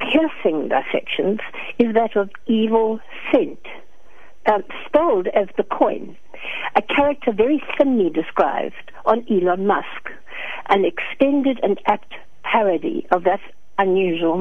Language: English